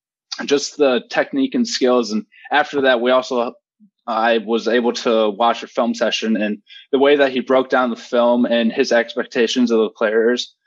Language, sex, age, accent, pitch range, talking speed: English, male, 20-39, American, 115-135 Hz, 185 wpm